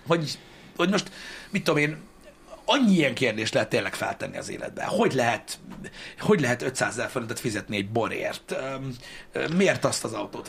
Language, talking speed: Hungarian, 150 wpm